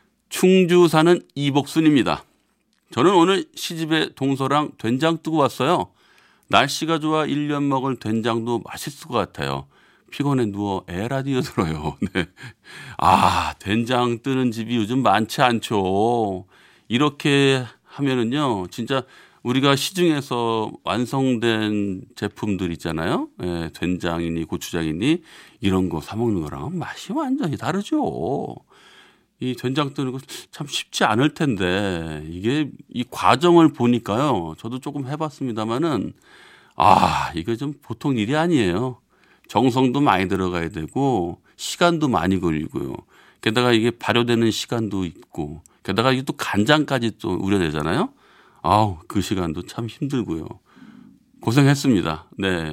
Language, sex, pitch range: Korean, male, 100-145 Hz